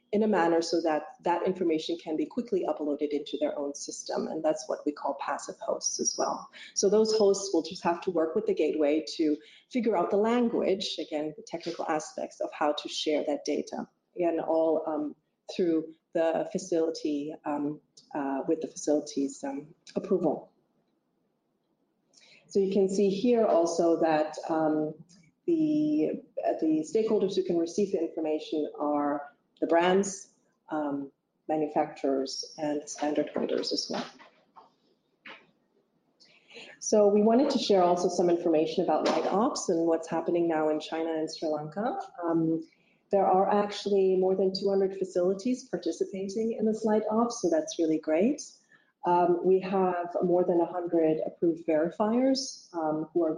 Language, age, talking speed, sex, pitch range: English, 30-49, 155 wpm, female, 155-200 Hz